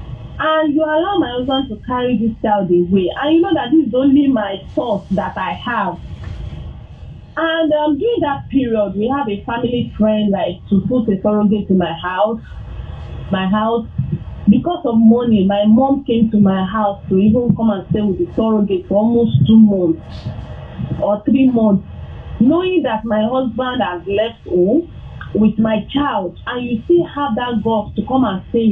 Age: 30-49